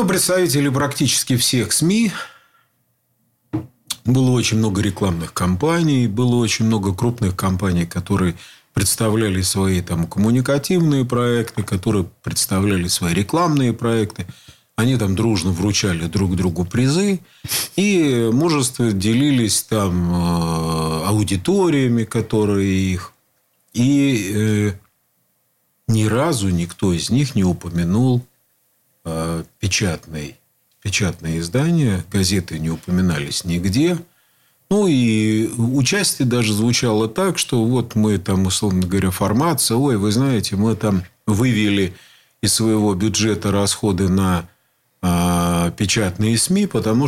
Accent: native